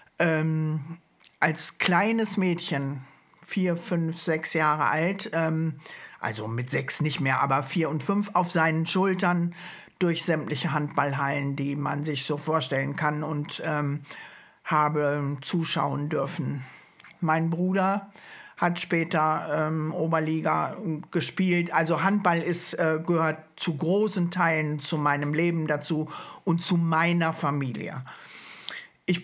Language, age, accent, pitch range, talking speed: German, 60-79, German, 150-175 Hz, 125 wpm